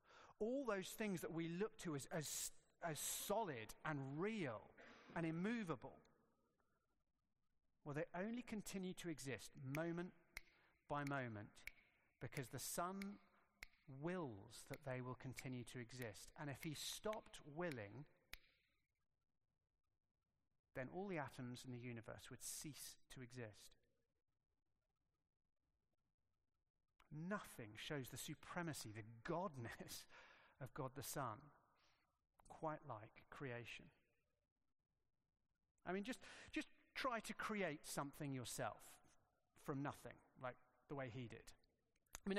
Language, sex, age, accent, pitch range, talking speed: English, male, 40-59, British, 125-175 Hz, 115 wpm